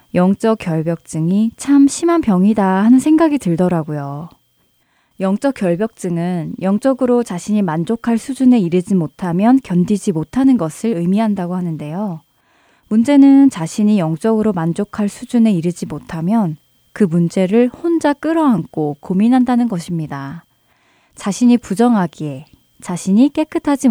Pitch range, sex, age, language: 165-225 Hz, female, 20-39, Korean